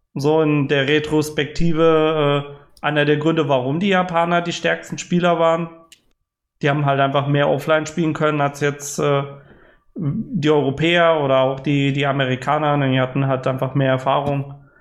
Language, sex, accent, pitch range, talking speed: German, male, German, 140-170 Hz, 150 wpm